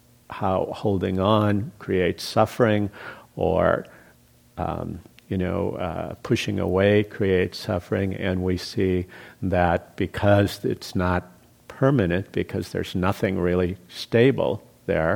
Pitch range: 95-120 Hz